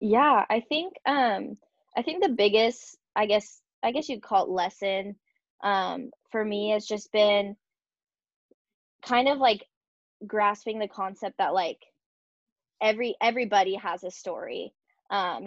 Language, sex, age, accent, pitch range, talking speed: English, female, 10-29, American, 185-210 Hz, 140 wpm